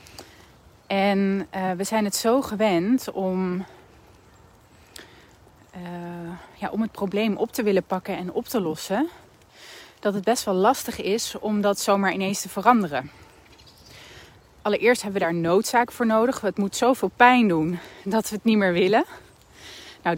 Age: 30-49